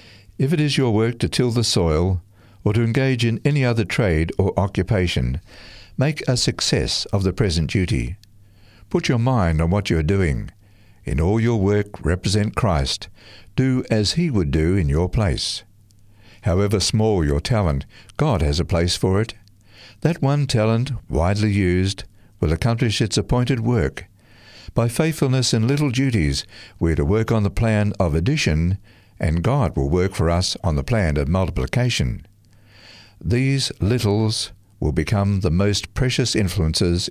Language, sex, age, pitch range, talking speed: English, male, 60-79, 90-115 Hz, 160 wpm